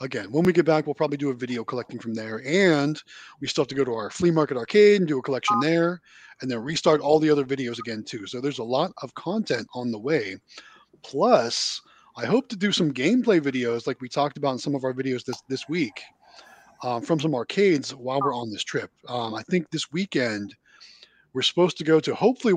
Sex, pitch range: male, 130-175 Hz